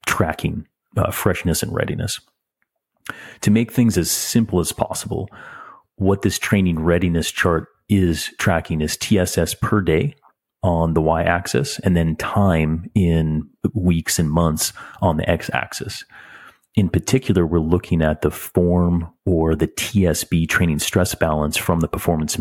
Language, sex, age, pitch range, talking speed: English, male, 30-49, 80-95 Hz, 140 wpm